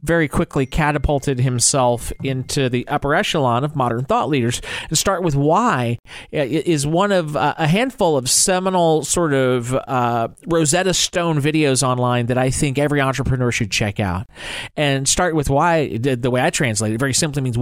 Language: English